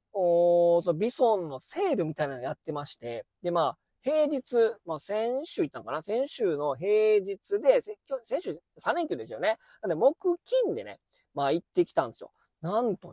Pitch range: 160-255 Hz